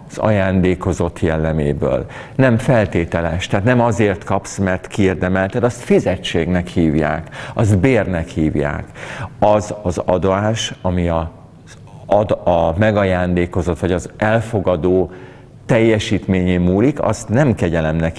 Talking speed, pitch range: 110 wpm, 90-120 Hz